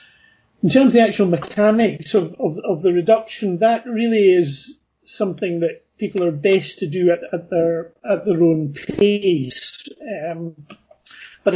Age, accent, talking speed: 40-59, British, 155 wpm